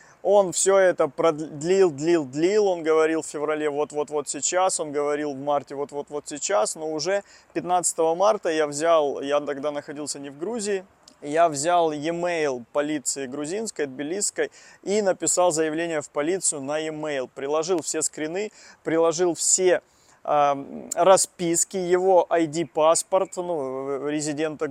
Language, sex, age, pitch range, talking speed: Russian, male, 20-39, 150-185 Hz, 130 wpm